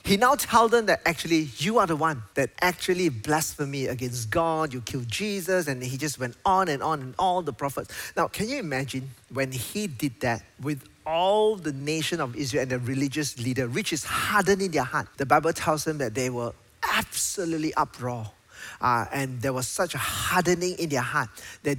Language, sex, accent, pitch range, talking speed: English, male, Malaysian, 130-170 Hz, 200 wpm